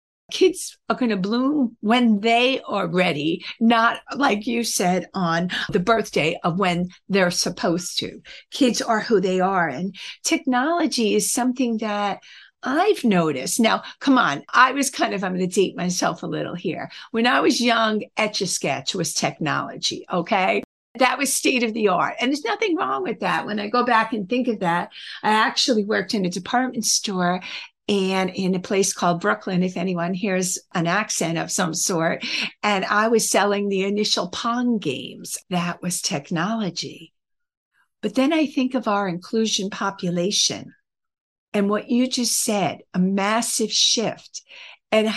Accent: American